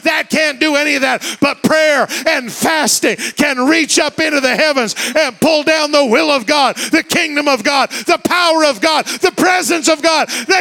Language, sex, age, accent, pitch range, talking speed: English, male, 40-59, American, 295-345 Hz, 205 wpm